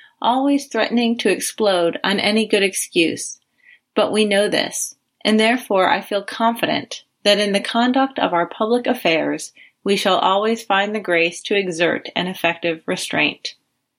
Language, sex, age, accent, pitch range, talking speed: English, female, 30-49, American, 160-220 Hz, 155 wpm